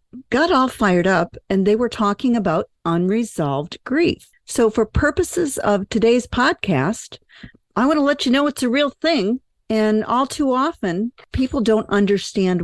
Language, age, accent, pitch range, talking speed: English, 50-69, American, 170-235 Hz, 160 wpm